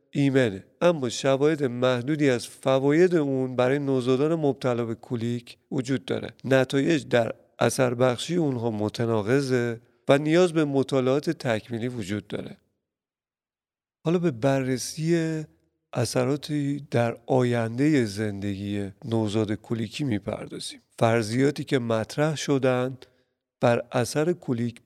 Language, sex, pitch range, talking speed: Persian, male, 115-145 Hz, 105 wpm